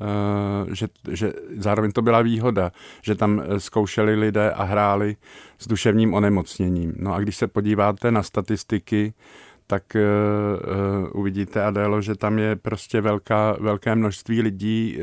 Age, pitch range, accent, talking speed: 50-69, 100-110 Hz, native, 130 wpm